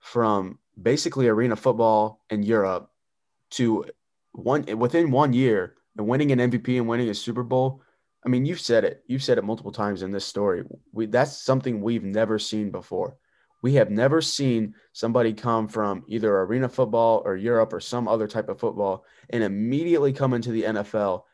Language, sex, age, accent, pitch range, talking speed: English, male, 20-39, American, 105-125 Hz, 180 wpm